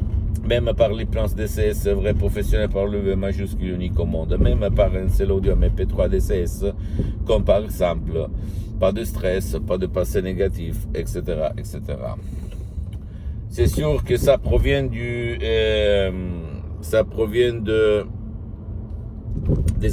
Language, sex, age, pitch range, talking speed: Italian, male, 60-79, 90-105 Hz, 135 wpm